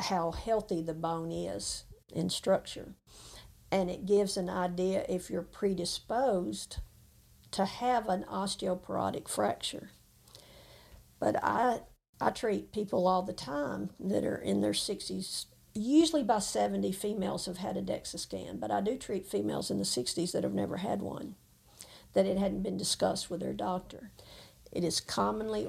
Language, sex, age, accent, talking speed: English, female, 50-69, American, 155 wpm